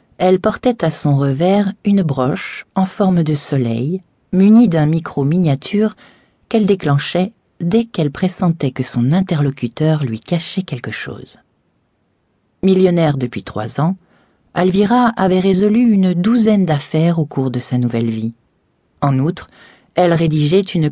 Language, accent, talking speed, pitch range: French, French, 140 wpm, 130-185 Hz